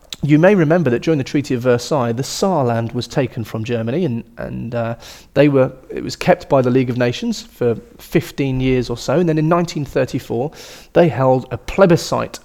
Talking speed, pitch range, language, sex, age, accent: 200 wpm, 115-155 Hz, English, male, 30-49, British